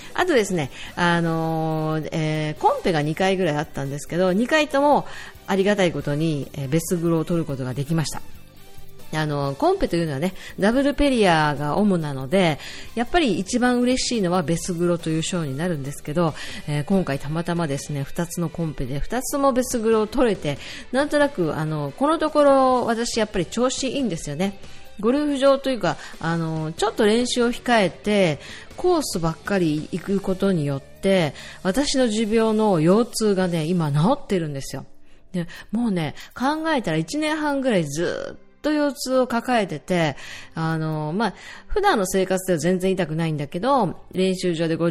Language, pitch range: Japanese, 155-225 Hz